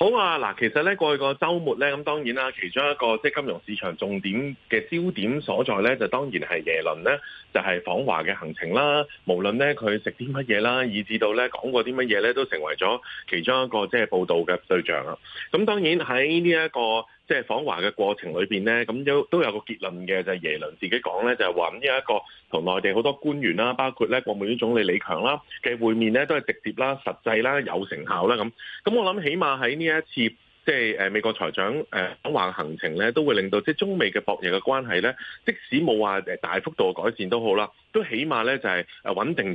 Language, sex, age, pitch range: Chinese, male, 30-49, 110-170 Hz